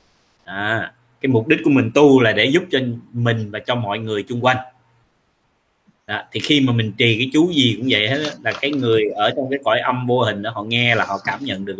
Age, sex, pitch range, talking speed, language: 20-39, male, 115-145 Hz, 245 wpm, Vietnamese